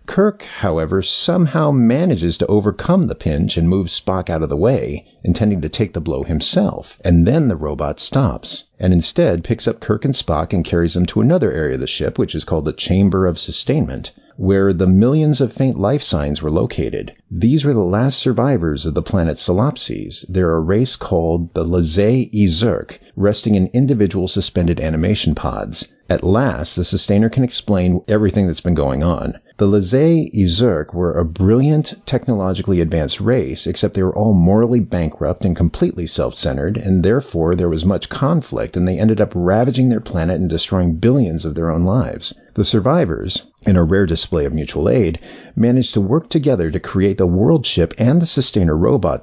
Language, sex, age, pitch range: English, male, 50-69, 85-120 Hz